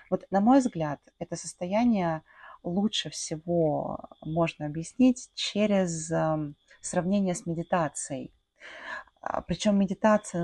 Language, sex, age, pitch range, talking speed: Russian, female, 20-39, 155-190 Hz, 90 wpm